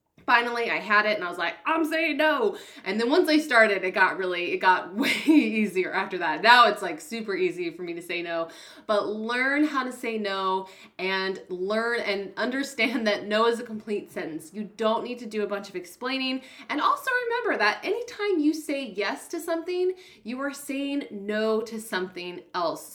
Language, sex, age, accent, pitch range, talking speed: English, female, 20-39, American, 200-270 Hz, 200 wpm